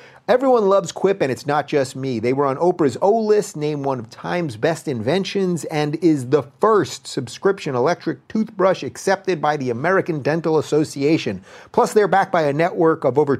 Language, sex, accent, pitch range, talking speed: English, male, American, 140-200 Hz, 185 wpm